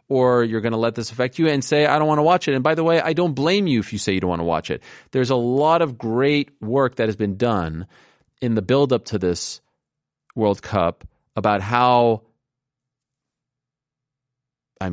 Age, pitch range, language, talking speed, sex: 30-49, 100-130 Hz, English, 215 wpm, male